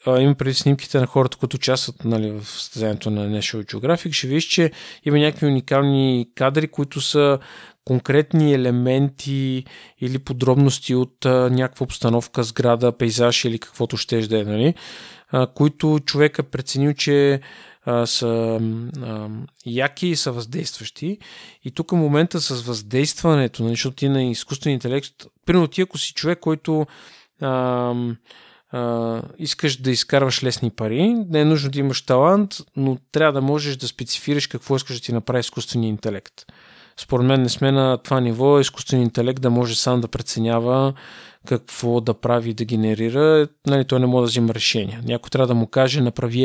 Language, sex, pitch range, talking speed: Bulgarian, male, 120-140 Hz, 160 wpm